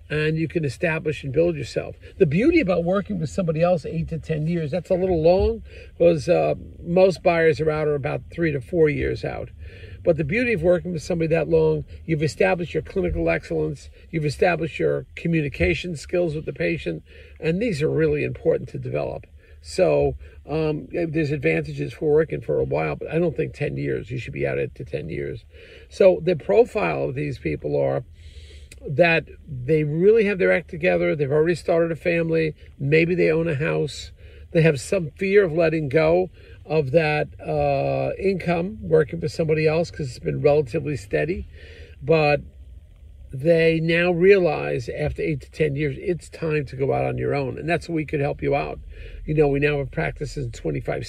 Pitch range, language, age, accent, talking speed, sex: 140-170 Hz, English, 50-69, American, 190 wpm, male